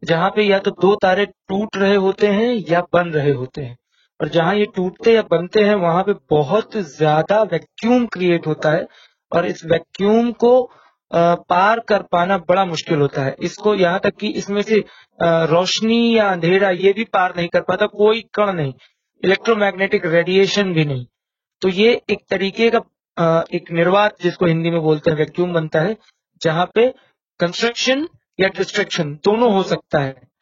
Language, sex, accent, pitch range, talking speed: Hindi, male, native, 170-215 Hz, 170 wpm